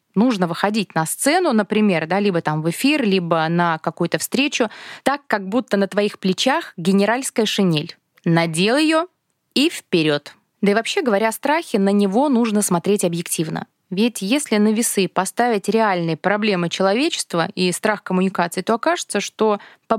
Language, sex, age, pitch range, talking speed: Russian, female, 20-39, 175-235 Hz, 155 wpm